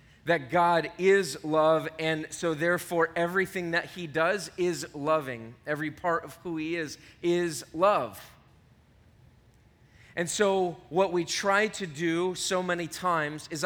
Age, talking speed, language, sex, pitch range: 30-49, 140 wpm, English, male, 145-175 Hz